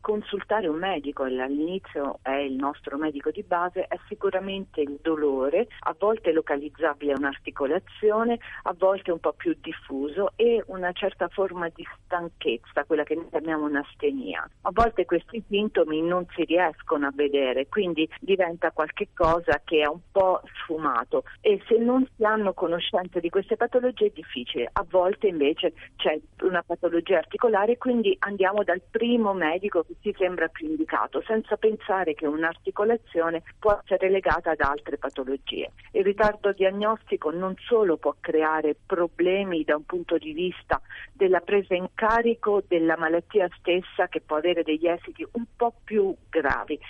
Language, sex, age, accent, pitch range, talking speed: Italian, female, 40-59, native, 155-210 Hz, 155 wpm